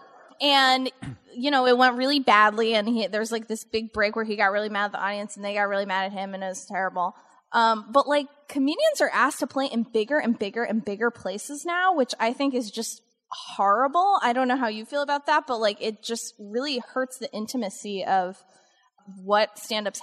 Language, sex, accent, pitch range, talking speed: English, female, American, 205-260 Hz, 225 wpm